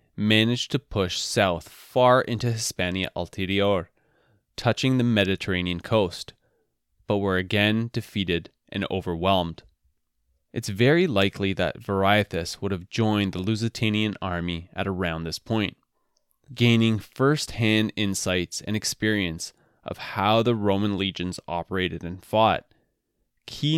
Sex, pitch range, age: male, 95-115 Hz, 20-39